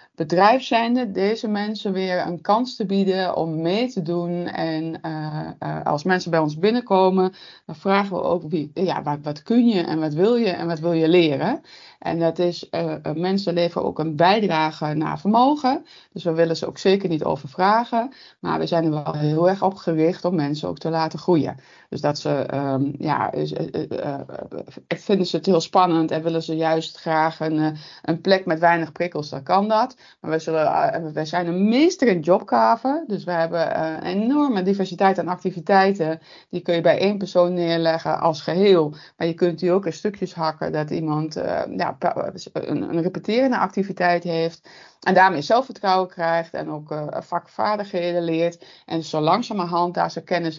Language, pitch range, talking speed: Dutch, 160-190 Hz, 185 wpm